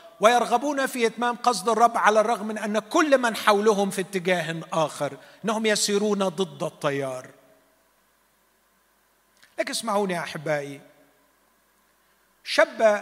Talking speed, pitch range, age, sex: 105 wpm, 150-220 Hz, 50-69, male